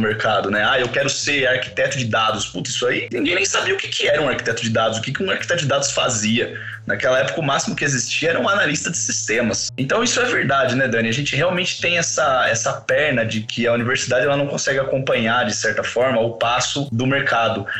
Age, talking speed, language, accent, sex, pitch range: 20-39, 235 wpm, Portuguese, Brazilian, male, 115-150 Hz